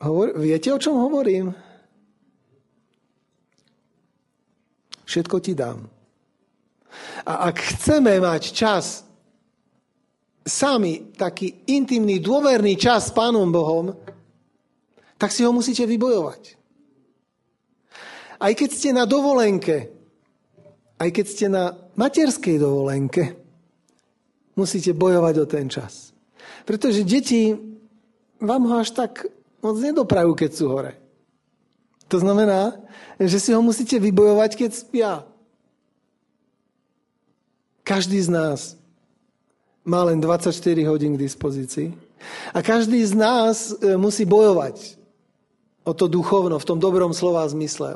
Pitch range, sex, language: 175-235 Hz, male, Slovak